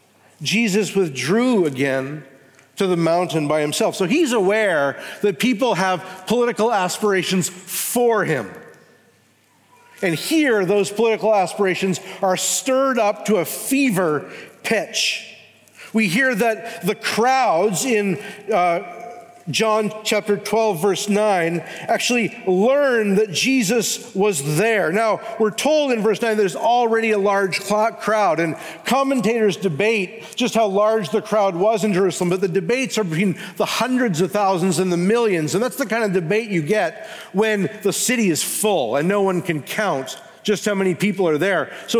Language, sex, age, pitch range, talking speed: English, male, 50-69, 185-230 Hz, 150 wpm